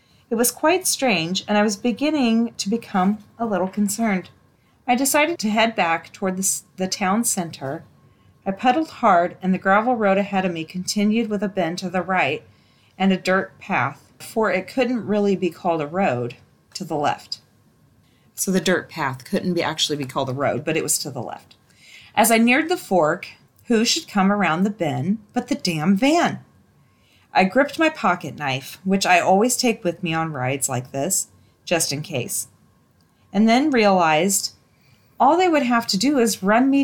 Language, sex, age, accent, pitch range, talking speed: English, female, 40-59, American, 175-230 Hz, 190 wpm